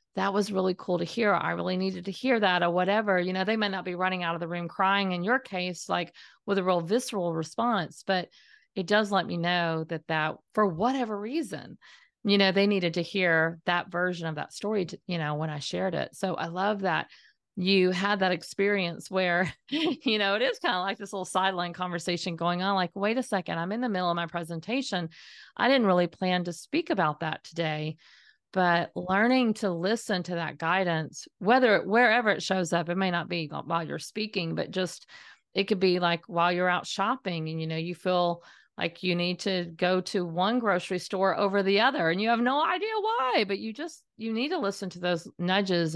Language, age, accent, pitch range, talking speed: English, 40-59, American, 175-210 Hz, 220 wpm